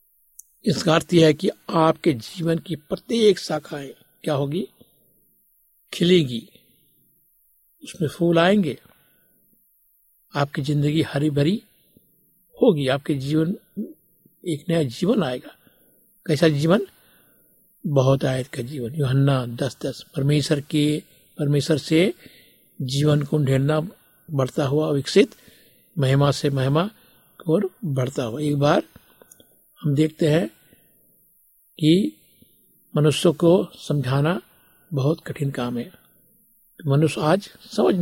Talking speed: 105 wpm